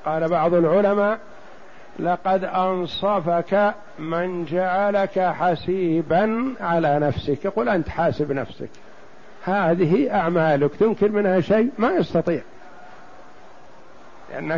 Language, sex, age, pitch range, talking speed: Arabic, male, 50-69, 170-205 Hz, 90 wpm